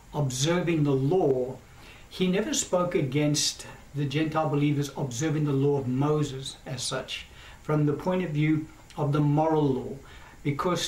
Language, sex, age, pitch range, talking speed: English, male, 60-79, 135-165 Hz, 150 wpm